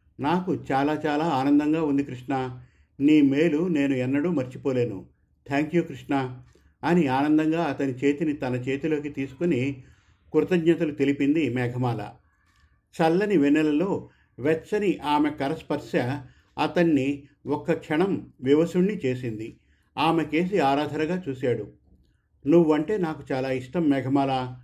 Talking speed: 100 wpm